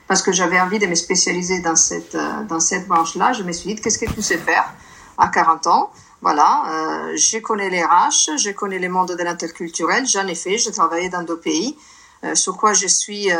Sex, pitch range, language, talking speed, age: female, 180-230 Hz, French, 225 wpm, 50-69